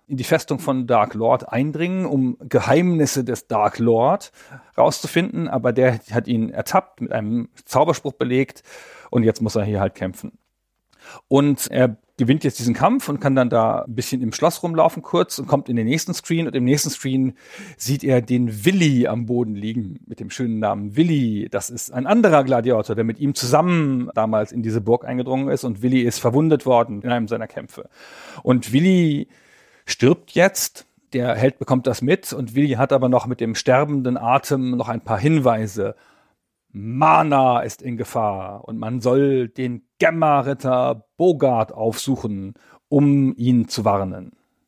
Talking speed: 170 wpm